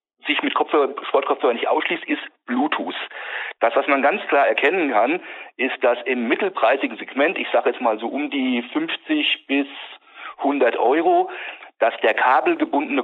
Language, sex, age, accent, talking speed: German, male, 40-59, German, 155 wpm